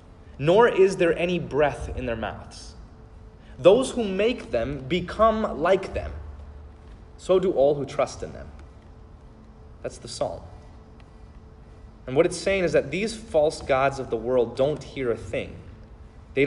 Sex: male